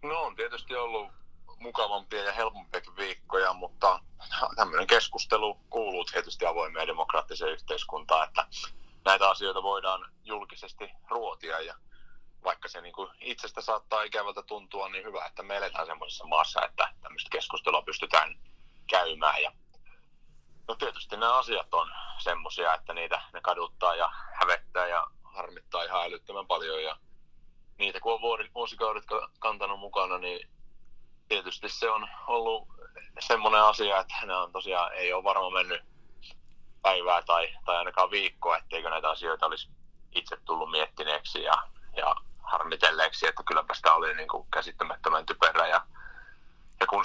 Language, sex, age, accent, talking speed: Finnish, male, 30-49, native, 135 wpm